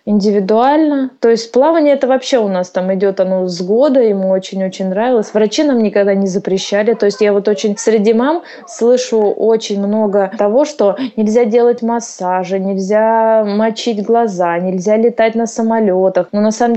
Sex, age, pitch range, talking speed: female, 20-39, 185-225 Hz, 165 wpm